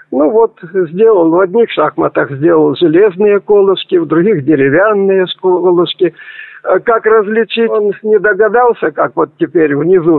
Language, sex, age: Russian, male, 50-69